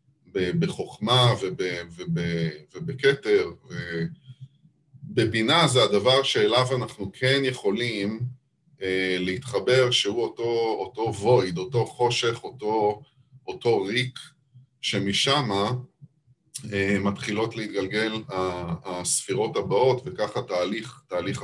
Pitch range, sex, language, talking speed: 105-135 Hz, male, Hebrew, 75 wpm